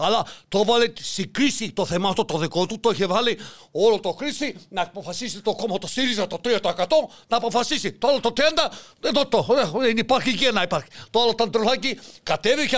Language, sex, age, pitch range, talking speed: Greek, male, 50-69, 190-255 Hz, 195 wpm